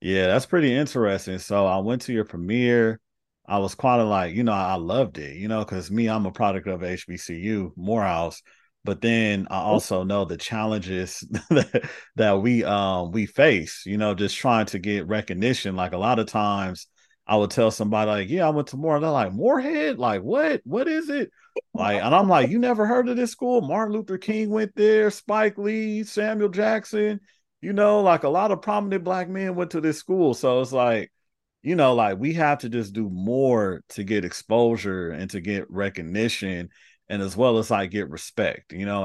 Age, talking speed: 30-49, 205 wpm